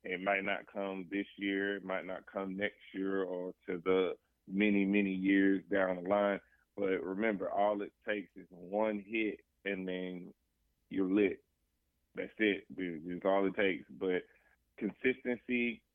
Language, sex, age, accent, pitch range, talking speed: English, male, 30-49, American, 90-100 Hz, 155 wpm